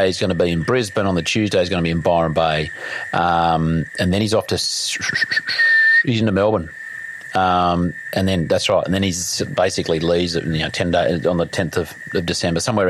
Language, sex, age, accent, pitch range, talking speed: English, male, 40-59, Australian, 90-125 Hz, 225 wpm